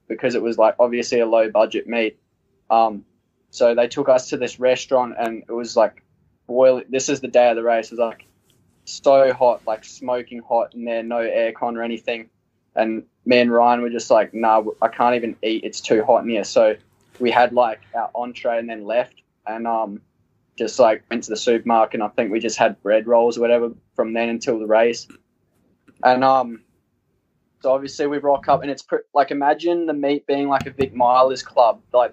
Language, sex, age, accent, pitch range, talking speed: English, male, 10-29, Australian, 115-130 Hz, 215 wpm